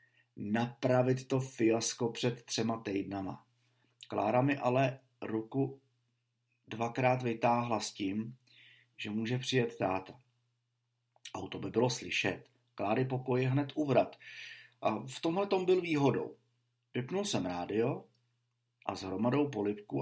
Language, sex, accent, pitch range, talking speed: Czech, male, native, 115-135 Hz, 120 wpm